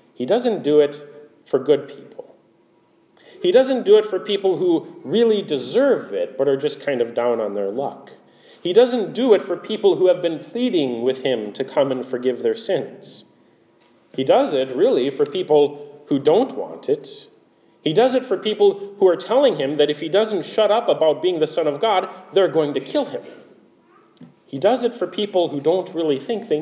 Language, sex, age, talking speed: English, male, 40-59, 205 wpm